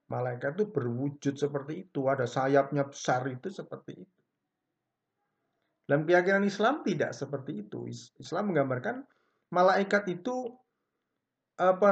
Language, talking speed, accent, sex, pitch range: Indonesian, 110 wpm, native, male, 145-200 Hz